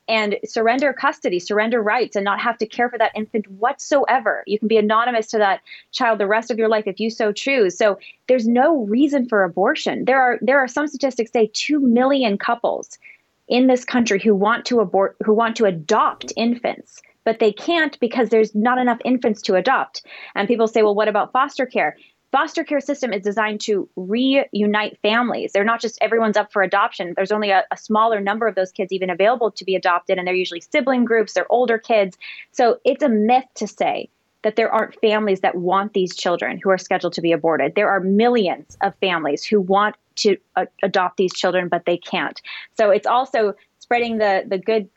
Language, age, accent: English, 20-39, American